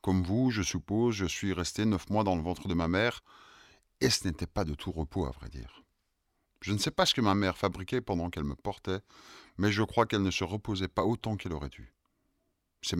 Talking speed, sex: 235 wpm, male